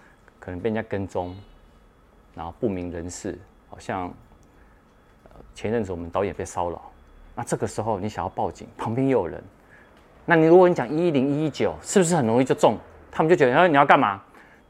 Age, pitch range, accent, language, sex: 30-49, 90-125 Hz, native, Chinese, male